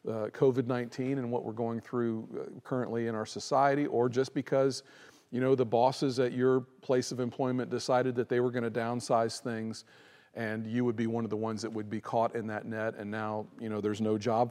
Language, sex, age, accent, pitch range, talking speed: English, male, 40-59, American, 115-145 Hz, 220 wpm